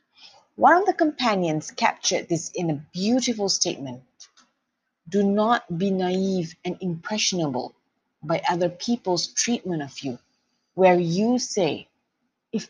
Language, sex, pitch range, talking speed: English, female, 170-240 Hz, 125 wpm